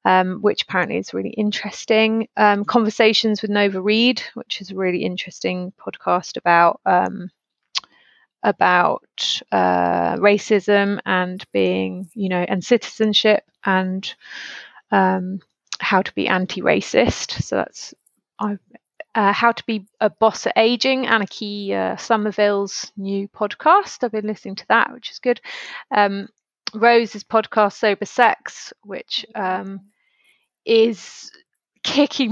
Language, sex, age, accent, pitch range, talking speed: English, female, 30-49, British, 185-220 Hz, 125 wpm